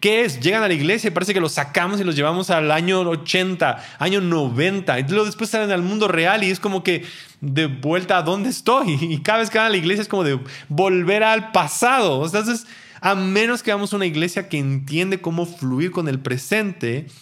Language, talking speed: Spanish, 225 wpm